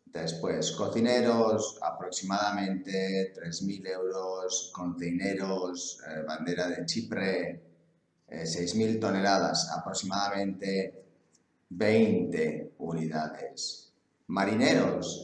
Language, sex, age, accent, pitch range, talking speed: English, male, 30-49, Spanish, 90-105 Hz, 65 wpm